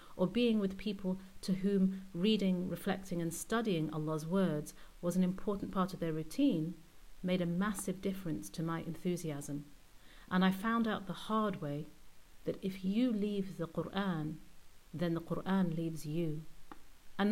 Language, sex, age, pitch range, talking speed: English, female, 40-59, 160-200 Hz, 155 wpm